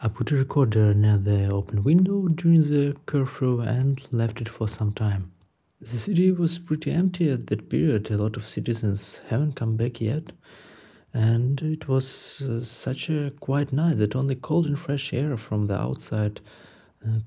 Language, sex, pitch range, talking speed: English, male, 110-145 Hz, 175 wpm